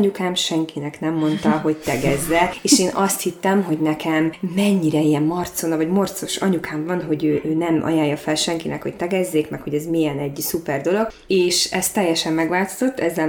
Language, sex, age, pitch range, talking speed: Hungarian, female, 20-39, 155-180 Hz, 180 wpm